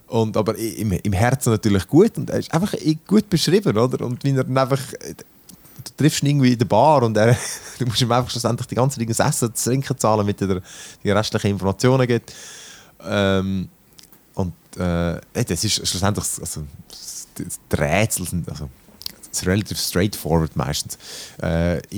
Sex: male